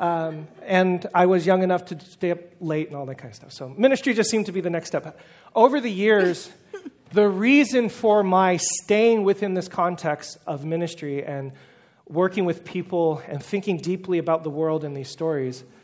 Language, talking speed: English, 195 wpm